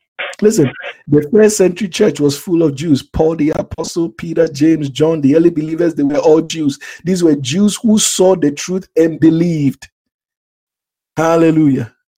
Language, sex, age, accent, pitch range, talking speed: English, male, 50-69, Nigerian, 135-180 Hz, 160 wpm